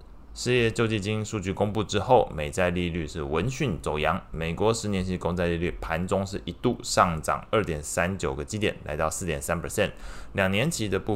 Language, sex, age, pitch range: Chinese, male, 20-39, 80-95 Hz